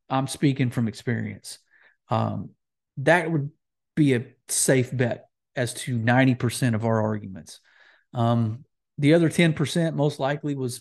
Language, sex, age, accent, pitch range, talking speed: English, male, 40-59, American, 120-145 Hz, 145 wpm